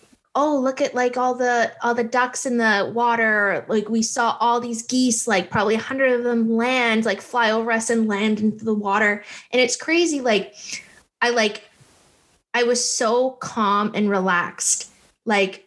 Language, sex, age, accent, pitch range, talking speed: English, female, 20-39, American, 210-240 Hz, 180 wpm